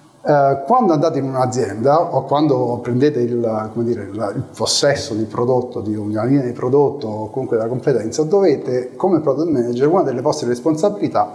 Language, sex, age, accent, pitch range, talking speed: Italian, male, 30-49, native, 125-170 Hz, 155 wpm